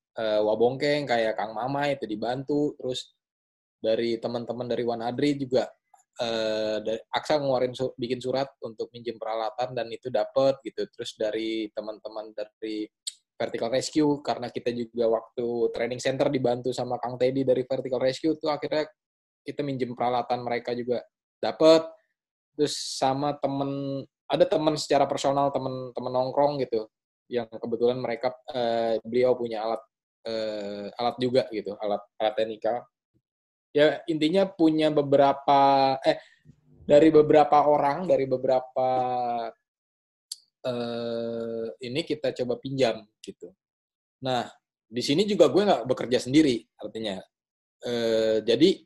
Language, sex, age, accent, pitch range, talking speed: Indonesian, male, 20-39, native, 115-145 Hz, 130 wpm